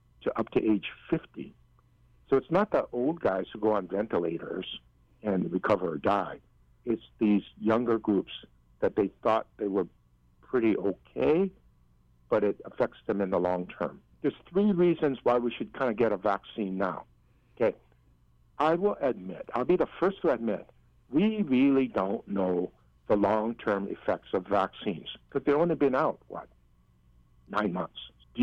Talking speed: 160 wpm